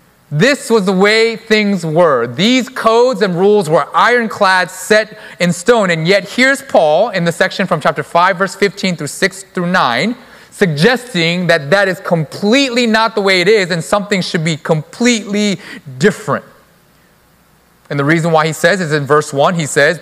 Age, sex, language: 30-49, male, English